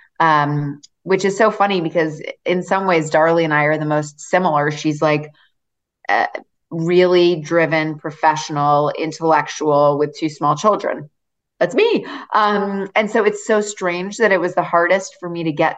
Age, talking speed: 30-49, 165 wpm